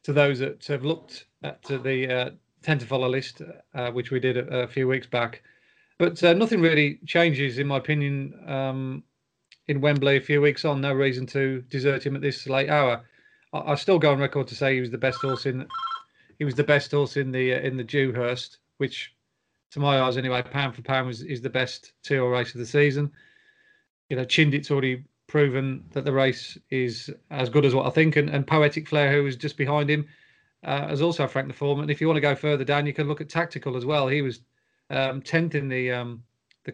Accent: British